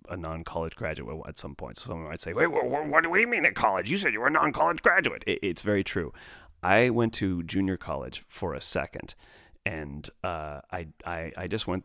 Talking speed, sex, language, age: 220 wpm, male, English, 30-49